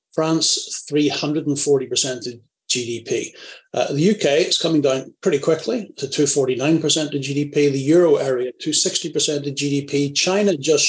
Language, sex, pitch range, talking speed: English, male, 130-190 Hz, 130 wpm